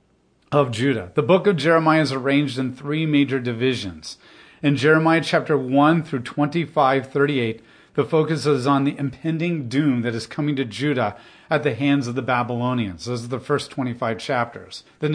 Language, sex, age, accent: English, male, 40-59, American